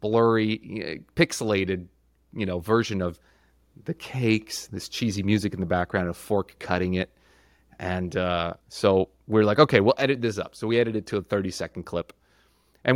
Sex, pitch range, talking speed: male, 90-140 Hz, 175 wpm